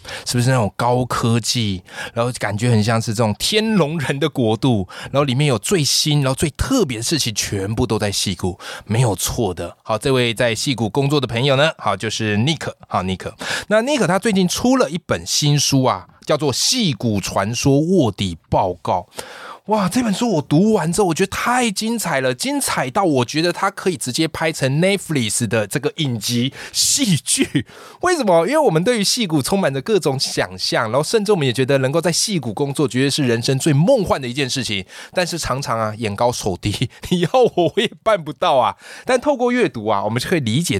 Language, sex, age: Chinese, male, 20-39